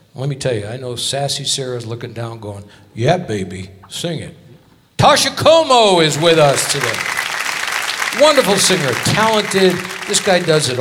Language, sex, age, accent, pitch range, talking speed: English, male, 60-79, American, 130-185 Hz, 155 wpm